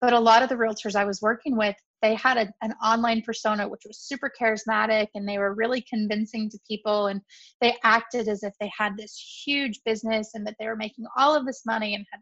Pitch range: 210-235 Hz